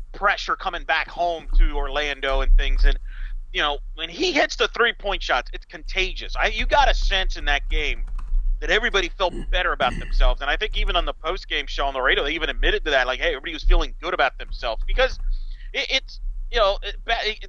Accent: American